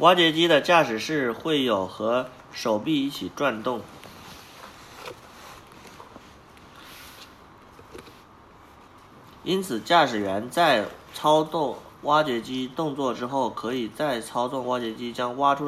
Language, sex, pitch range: Chinese, male, 100-140 Hz